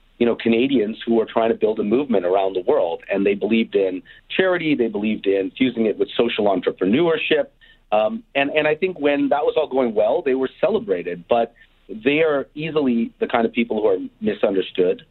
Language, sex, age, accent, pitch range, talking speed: English, male, 40-59, American, 105-160 Hz, 205 wpm